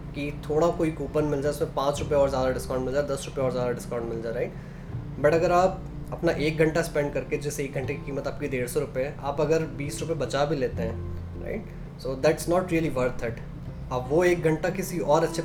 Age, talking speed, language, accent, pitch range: 20-39, 235 wpm, Hindi, native, 135-155 Hz